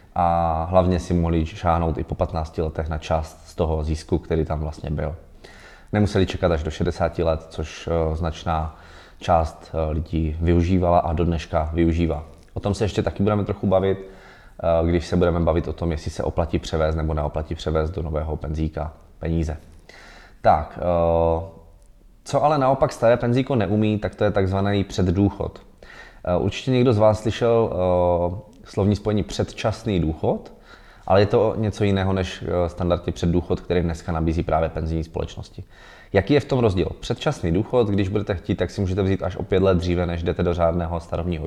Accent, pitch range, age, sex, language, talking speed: native, 80-100 Hz, 20-39, male, Czech, 170 wpm